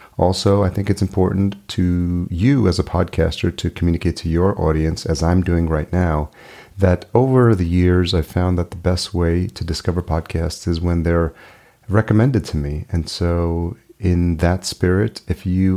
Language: English